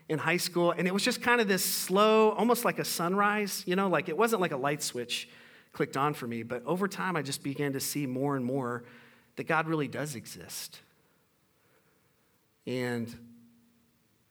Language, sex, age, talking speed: English, male, 40-59, 190 wpm